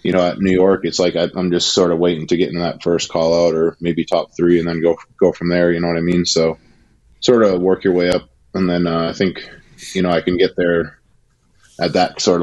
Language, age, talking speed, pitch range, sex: English, 20-39, 265 wpm, 85-95 Hz, male